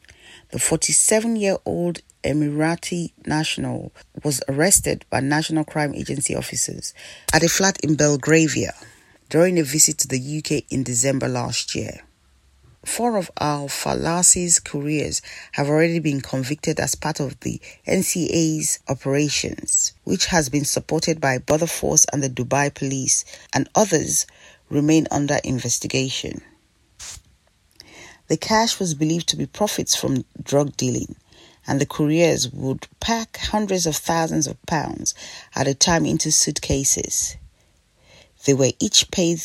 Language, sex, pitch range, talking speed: English, female, 135-165 Hz, 130 wpm